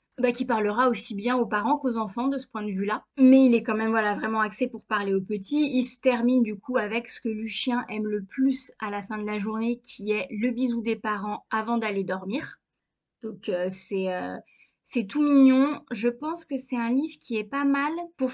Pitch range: 215-265 Hz